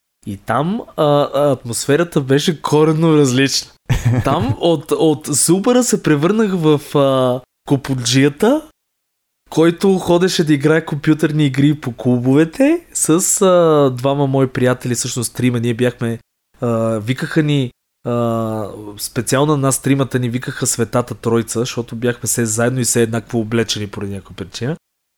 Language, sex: Bulgarian, male